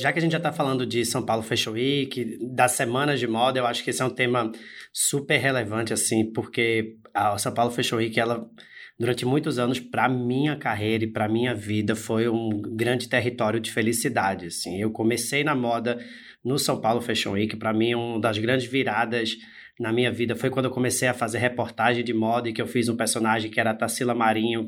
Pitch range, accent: 115-135 Hz, Brazilian